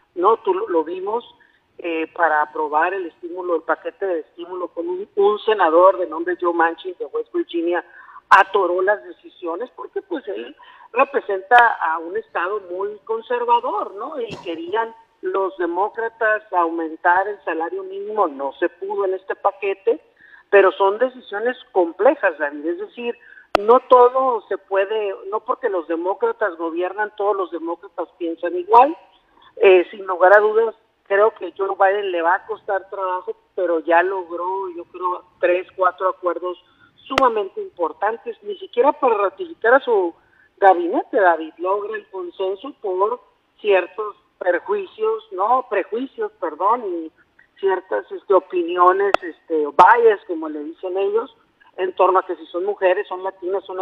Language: Spanish